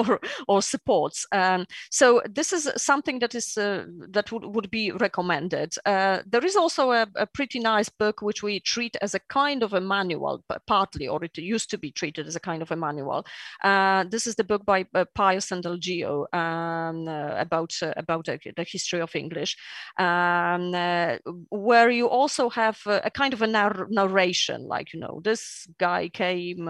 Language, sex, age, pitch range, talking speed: English, female, 30-49, 180-230 Hz, 195 wpm